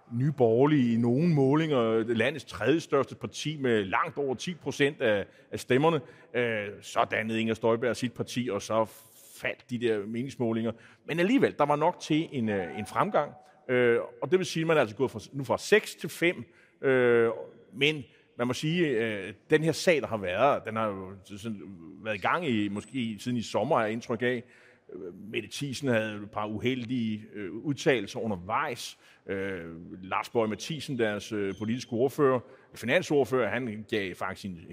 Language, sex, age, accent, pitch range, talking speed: Danish, male, 30-49, native, 110-150 Hz, 170 wpm